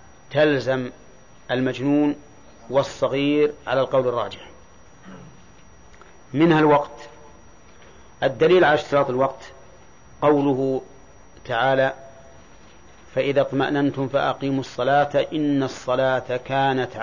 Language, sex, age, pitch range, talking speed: Arabic, male, 40-59, 130-145 Hz, 75 wpm